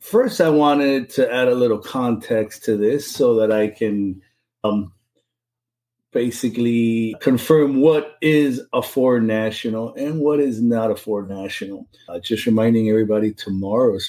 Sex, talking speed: male, 145 wpm